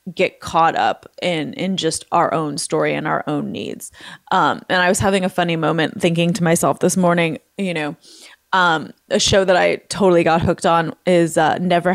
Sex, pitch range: female, 170-205 Hz